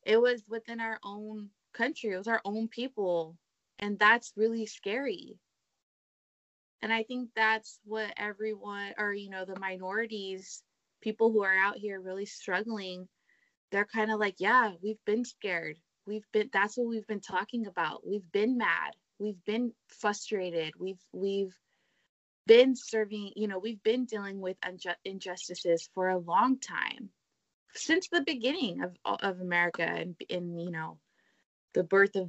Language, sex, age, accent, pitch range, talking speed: English, female, 20-39, American, 180-220 Hz, 155 wpm